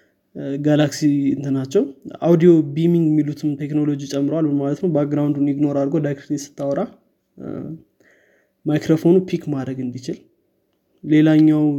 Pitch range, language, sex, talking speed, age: 140-155 Hz, Amharic, male, 85 wpm, 20-39